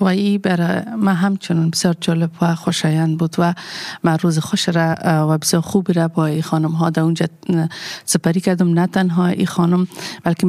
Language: German